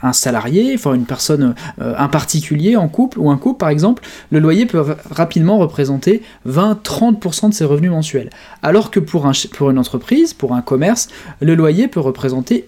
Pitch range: 135-190 Hz